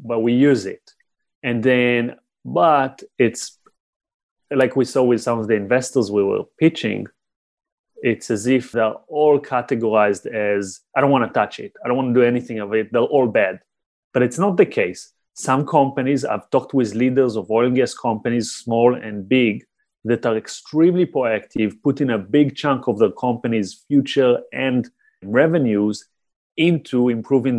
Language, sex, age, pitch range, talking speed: English, male, 30-49, 115-140 Hz, 170 wpm